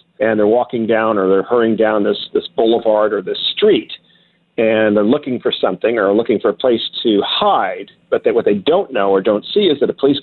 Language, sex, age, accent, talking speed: English, male, 50-69, American, 230 wpm